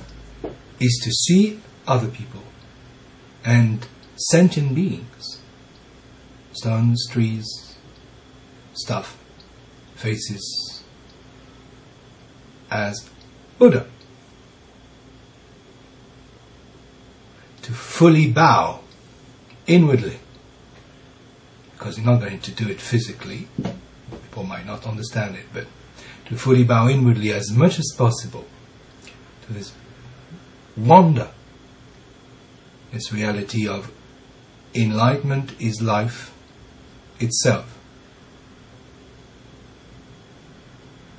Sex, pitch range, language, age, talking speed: male, 115-135 Hz, English, 60-79, 75 wpm